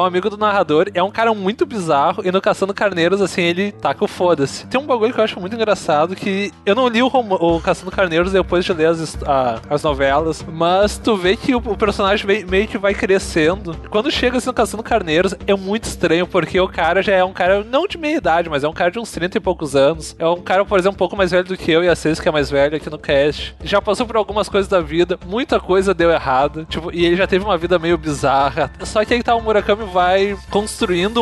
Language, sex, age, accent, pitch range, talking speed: Portuguese, male, 20-39, Brazilian, 165-205 Hz, 255 wpm